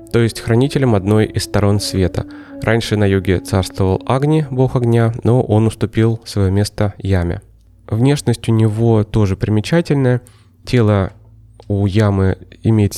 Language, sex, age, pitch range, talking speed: Russian, male, 20-39, 95-120 Hz, 135 wpm